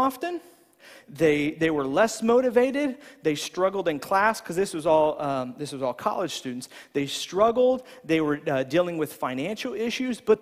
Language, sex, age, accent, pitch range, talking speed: English, male, 40-59, American, 175-265 Hz, 175 wpm